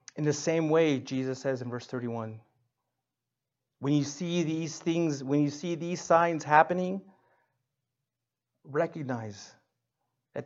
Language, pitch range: English, 130-150 Hz